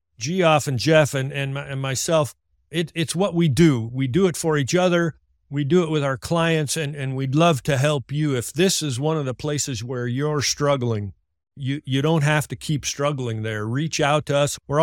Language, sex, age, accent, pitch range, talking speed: English, male, 50-69, American, 125-155 Hz, 220 wpm